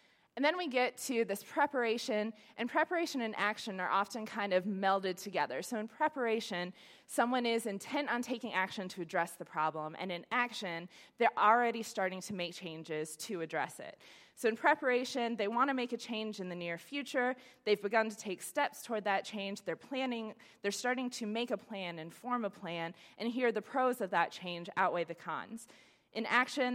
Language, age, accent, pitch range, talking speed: English, 20-39, American, 180-245 Hz, 195 wpm